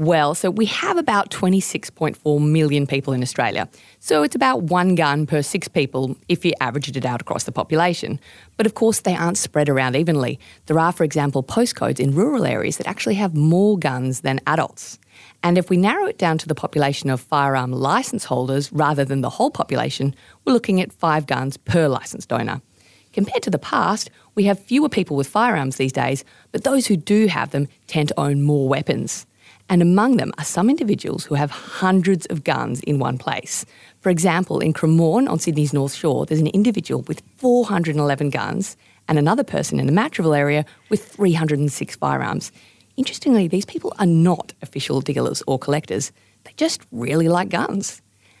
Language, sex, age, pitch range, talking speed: English, female, 30-49, 135-190 Hz, 185 wpm